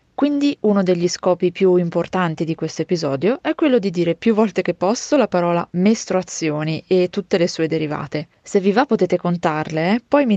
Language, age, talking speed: Italian, 20-39, 190 wpm